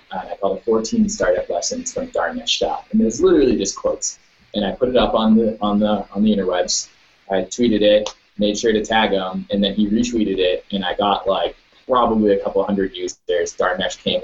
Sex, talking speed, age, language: male, 220 wpm, 20-39, English